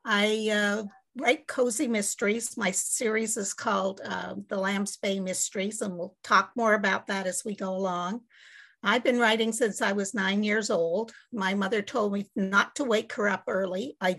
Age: 50-69